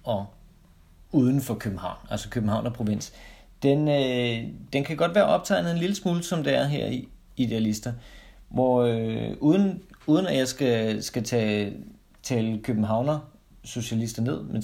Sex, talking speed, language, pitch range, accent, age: male, 150 wpm, Danish, 110-130 Hz, native, 30-49